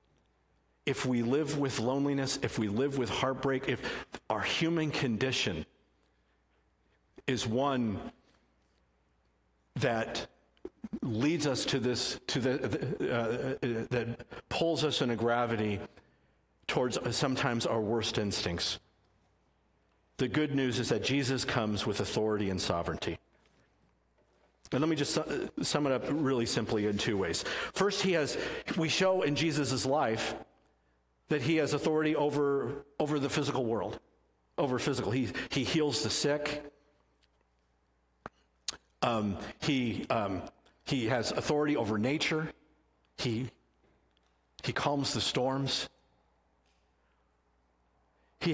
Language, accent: English, American